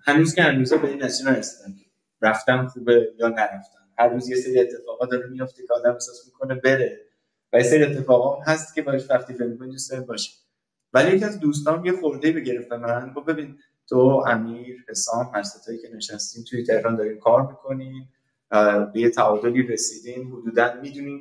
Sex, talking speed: male, 180 wpm